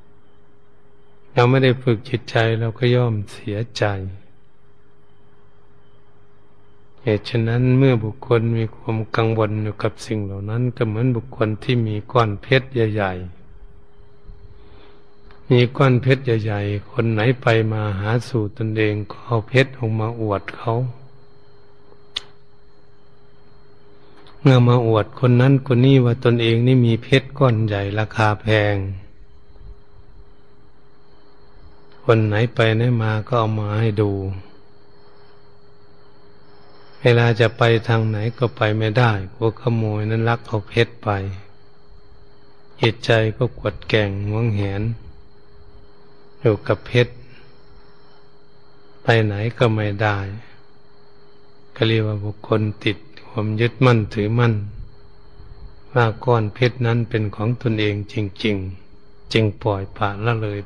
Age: 60-79